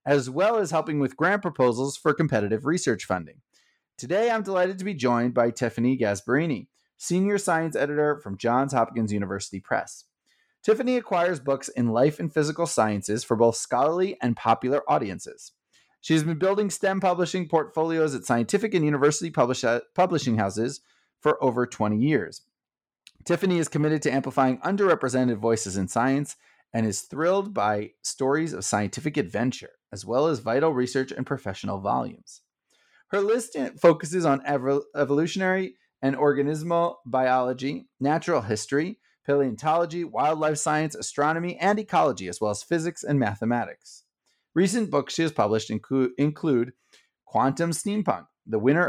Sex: male